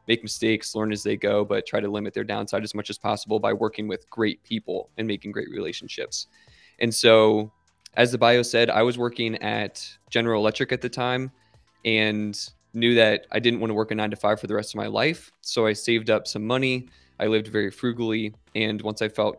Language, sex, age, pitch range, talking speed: English, male, 20-39, 105-115 Hz, 225 wpm